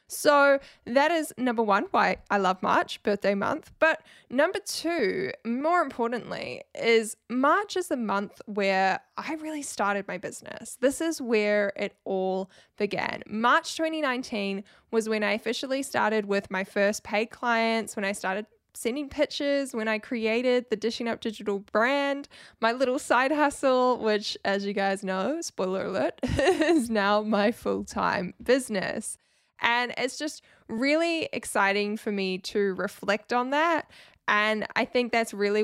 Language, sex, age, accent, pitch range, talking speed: English, female, 10-29, Australian, 200-265 Hz, 150 wpm